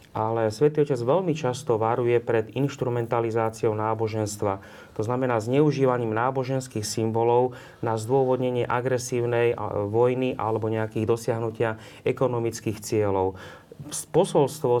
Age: 30-49